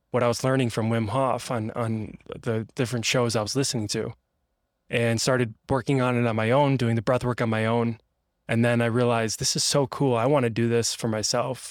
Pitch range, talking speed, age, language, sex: 110-130 Hz, 235 wpm, 20-39, English, male